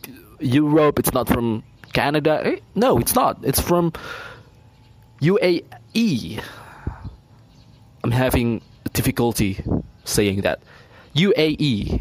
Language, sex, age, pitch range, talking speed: Indonesian, male, 20-39, 110-145 Hz, 85 wpm